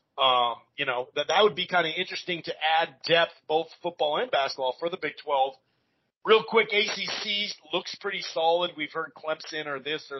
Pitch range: 140-175 Hz